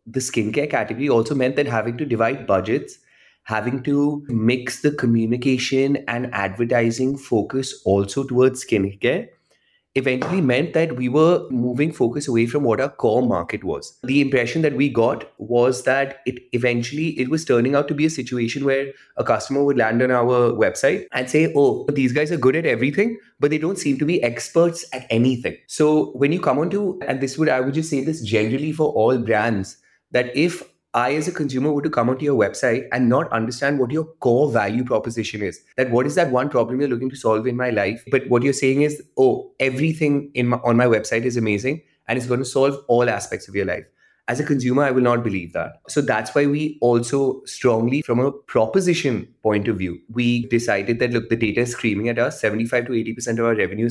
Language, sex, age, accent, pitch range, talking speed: English, male, 30-49, Indian, 115-145 Hz, 210 wpm